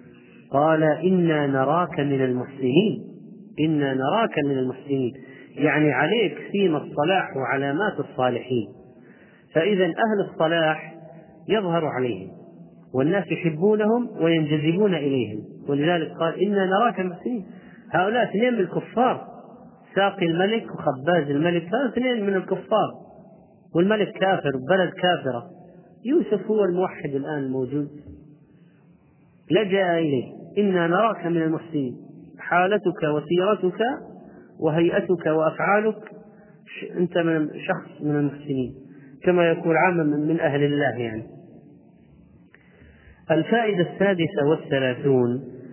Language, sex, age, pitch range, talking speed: Arabic, male, 40-59, 135-185 Hz, 100 wpm